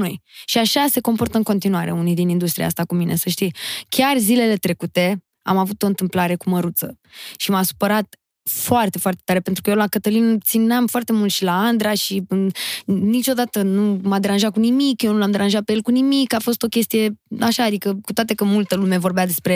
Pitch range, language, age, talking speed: 185-220 Hz, Romanian, 20-39, 210 wpm